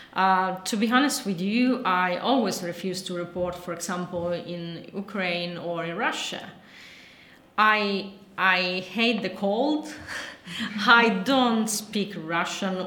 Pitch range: 185-235 Hz